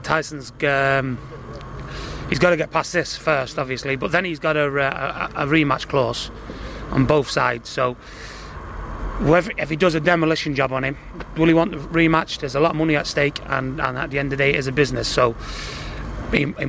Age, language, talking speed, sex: 30-49, English, 200 wpm, male